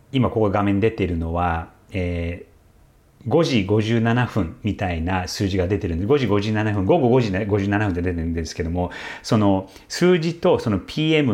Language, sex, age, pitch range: Japanese, male, 40-59, 95-125 Hz